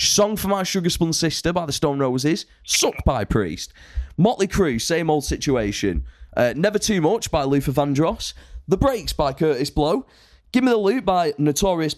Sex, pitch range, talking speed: male, 120-170 Hz, 175 wpm